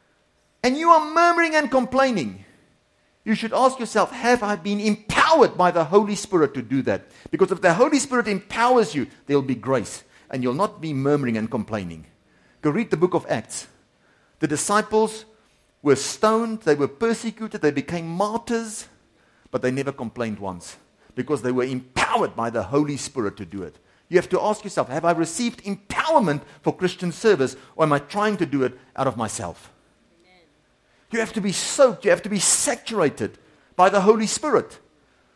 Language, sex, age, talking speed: English, male, 50-69, 180 wpm